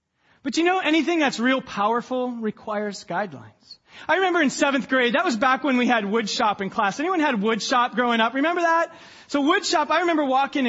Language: English